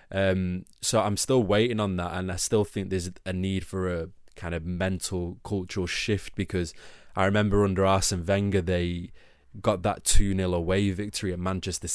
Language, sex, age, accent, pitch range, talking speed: English, male, 20-39, British, 90-100 Hz, 175 wpm